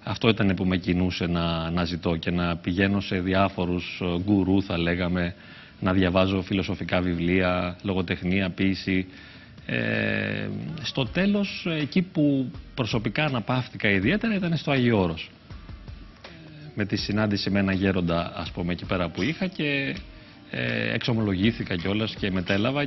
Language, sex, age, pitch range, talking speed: Greek, male, 30-49, 95-125 Hz, 135 wpm